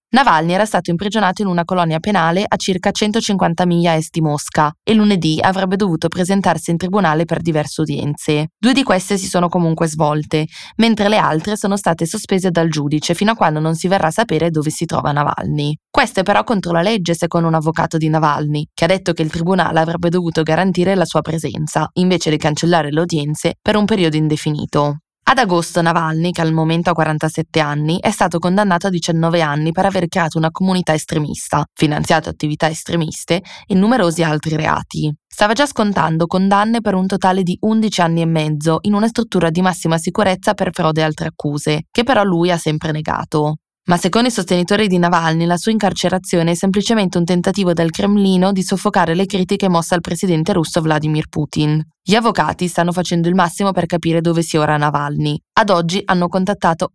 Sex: female